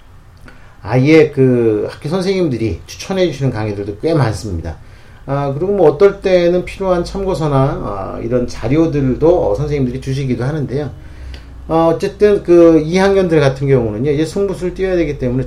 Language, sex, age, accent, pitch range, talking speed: English, male, 40-59, Korean, 105-160 Hz, 130 wpm